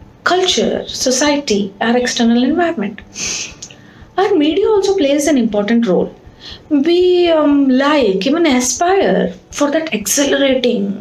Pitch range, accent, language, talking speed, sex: 245-345 Hz, Indian, English, 110 wpm, female